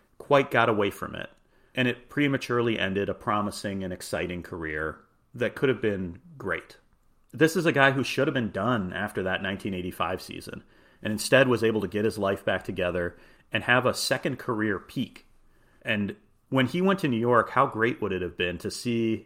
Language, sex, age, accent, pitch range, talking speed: English, male, 40-59, American, 100-125 Hz, 195 wpm